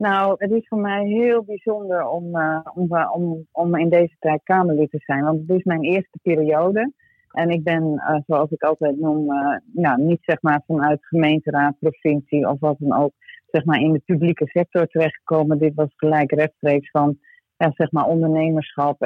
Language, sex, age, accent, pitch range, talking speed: Dutch, female, 40-59, Dutch, 150-170 Hz, 155 wpm